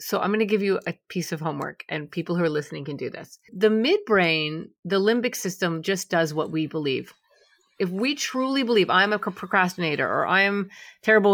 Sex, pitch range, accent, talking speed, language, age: female, 180-245 Hz, American, 205 wpm, English, 30-49